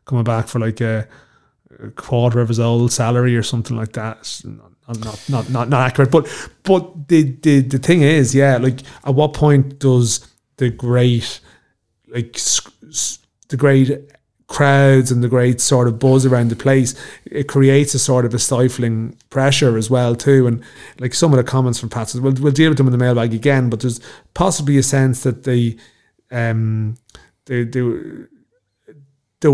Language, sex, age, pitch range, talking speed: English, male, 30-49, 115-135 Hz, 180 wpm